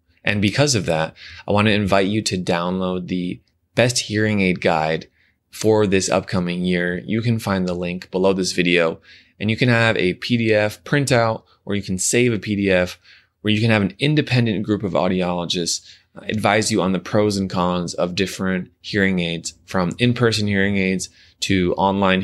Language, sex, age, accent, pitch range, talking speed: English, male, 20-39, American, 90-110 Hz, 180 wpm